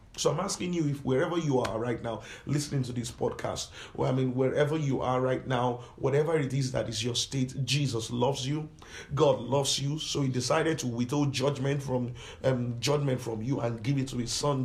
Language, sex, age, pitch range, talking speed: English, male, 50-69, 125-145 Hz, 210 wpm